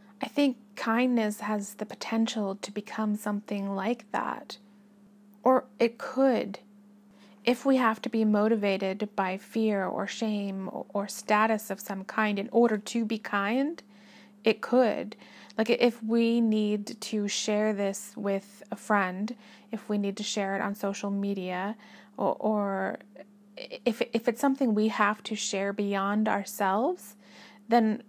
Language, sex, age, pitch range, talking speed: English, female, 30-49, 205-225 Hz, 145 wpm